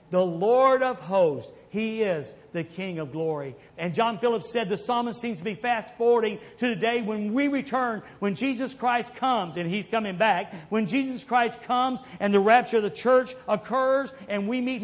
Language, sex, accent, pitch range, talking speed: English, male, American, 190-255 Hz, 200 wpm